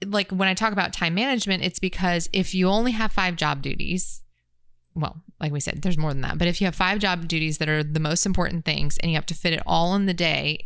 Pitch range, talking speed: 155-185 Hz, 265 wpm